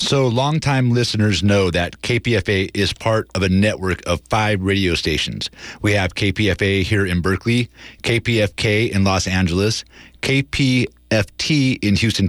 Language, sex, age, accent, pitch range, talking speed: English, male, 30-49, American, 95-115 Hz, 135 wpm